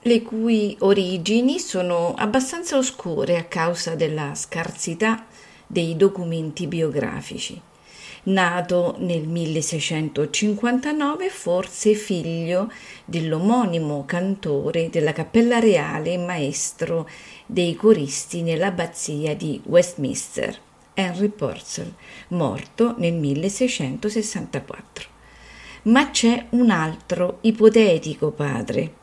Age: 40-59